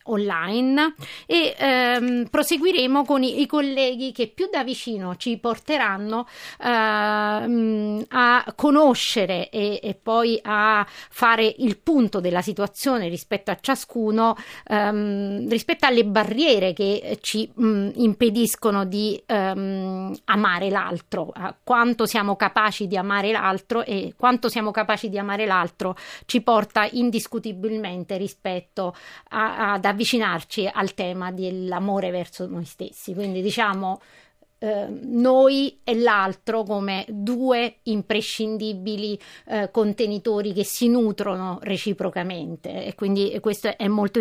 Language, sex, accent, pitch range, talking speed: Italian, female, native, 200-240 Hz, 115 wpm